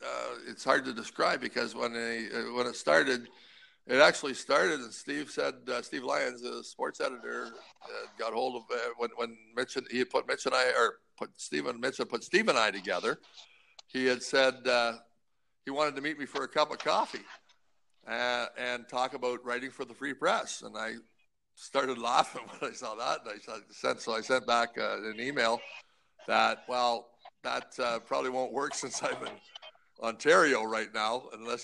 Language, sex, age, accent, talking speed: English, male, 60-79, American, 195 wpm